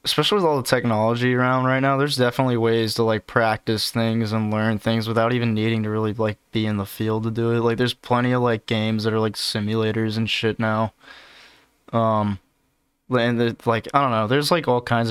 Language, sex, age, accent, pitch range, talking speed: English, male, 20-39, American, 110-125 Hz, 215 wpm